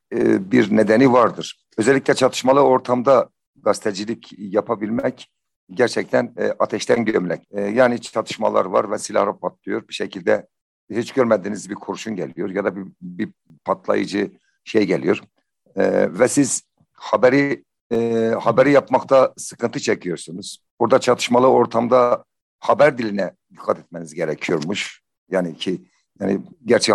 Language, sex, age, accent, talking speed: Turkish, male, 60-79, native, 110 wpm